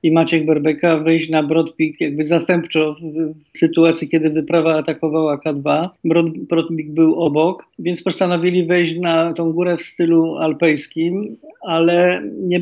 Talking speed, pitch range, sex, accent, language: 140 wpm, 160-175 Hz, male, native, Polish